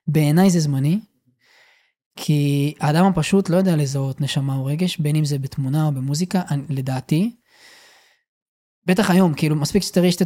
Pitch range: 150-180 Hz